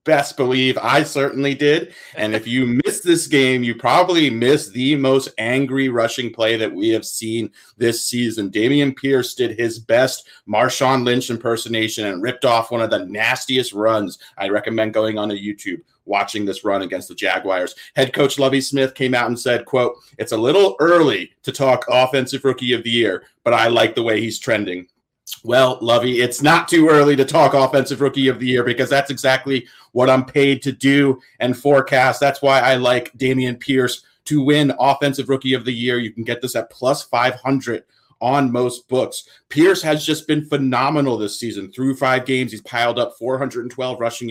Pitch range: 120-135 Hz